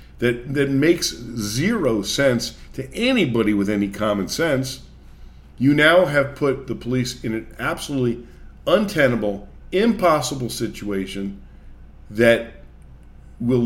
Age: 50-69